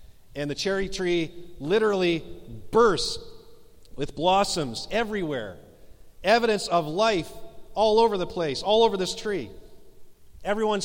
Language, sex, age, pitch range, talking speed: English, male, 40-59, 145-200 Hz, 115 wpm